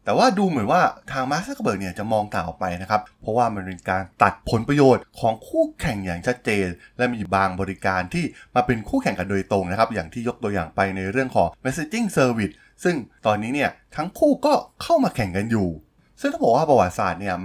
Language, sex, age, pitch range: Thai, male, 20-39, 95-140 Hz